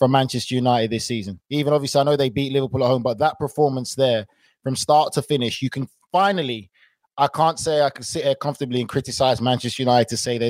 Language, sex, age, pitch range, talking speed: English, male, 20-39, 125-150 Hz, 230 wpm